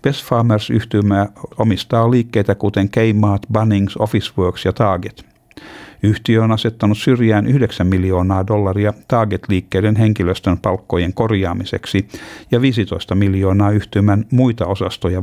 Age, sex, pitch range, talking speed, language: 60-79, male, 100-120 Hz, 100 wpm, Finnish